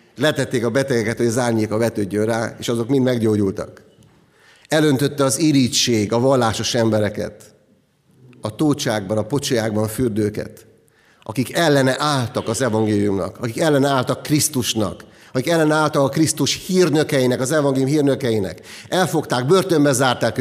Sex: male